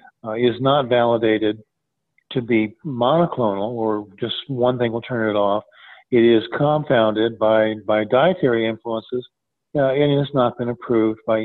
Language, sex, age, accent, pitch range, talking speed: English, male, 50-69, American, 115-170 Hz, 155 wpm